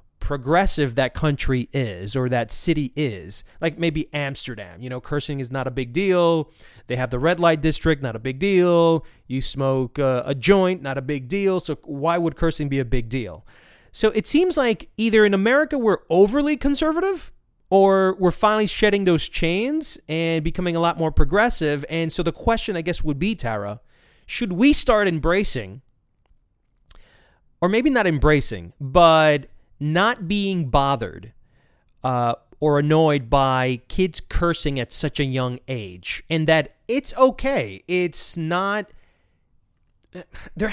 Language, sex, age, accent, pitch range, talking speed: English, male, 30-49, American, 135-190 Hz, 160 wpm